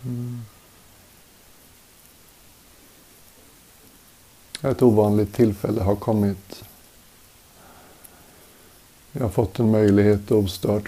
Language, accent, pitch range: Swedish, native, 100-110 Hz